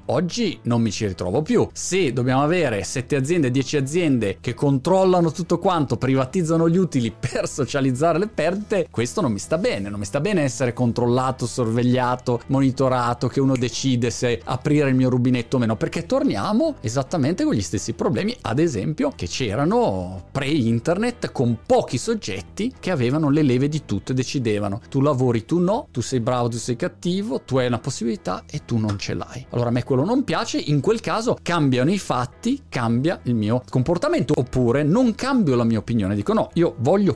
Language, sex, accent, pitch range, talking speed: Italian, male, native, 120-180 Hz, 185 wpm